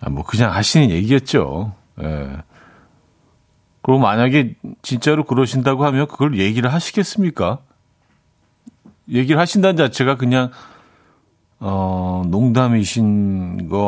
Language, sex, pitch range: Korean, male, 105-140 Hz